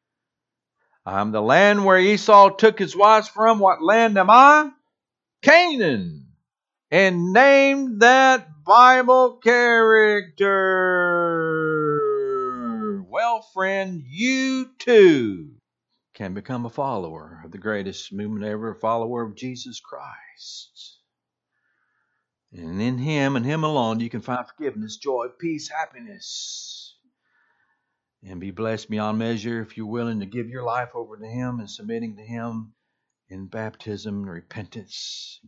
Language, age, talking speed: English, 50-69, 125 wpm